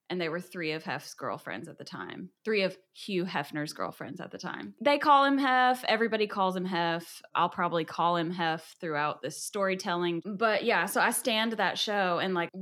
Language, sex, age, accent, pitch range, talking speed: English, female, 10-29, American, 160-200 Hz, 205 wpm